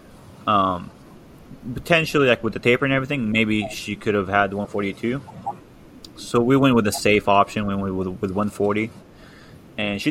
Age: 20-39